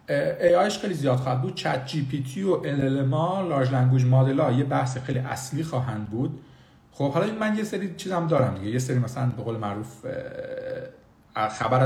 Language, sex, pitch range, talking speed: Persian, male, 115-150 Hz, 165 wpm